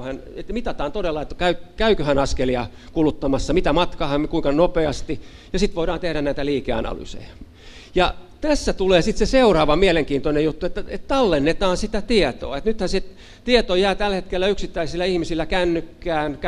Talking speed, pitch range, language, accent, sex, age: 155 wpm, 140-185 Hz, Finnish, native, male, 50-69